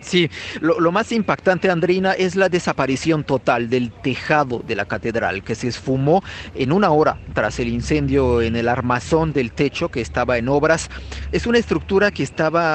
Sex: male